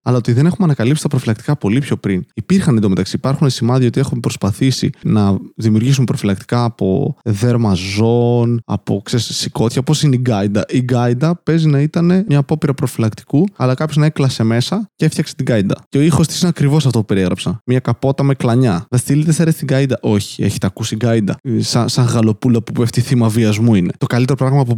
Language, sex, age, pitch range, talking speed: Greek, male, 20-39, 110-135 Hz, 195 wpm